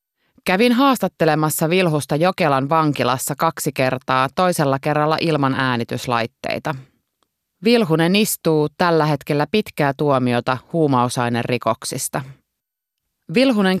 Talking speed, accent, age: 85 wpm, native, 20-39